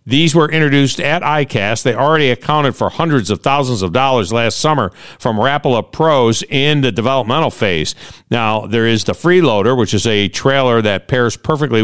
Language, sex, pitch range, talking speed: English, male, 110-145 Hz, 175 wpm